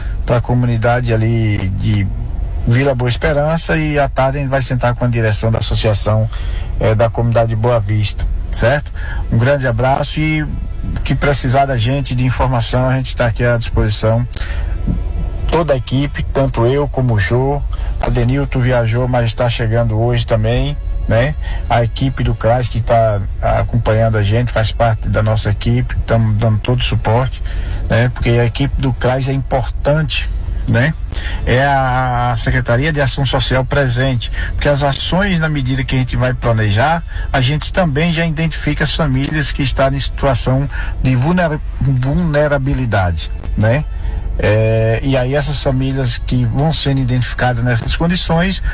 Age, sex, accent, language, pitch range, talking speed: 50-69, male, Brazilian, Portuguese, 110-135 Hz, 155 wpm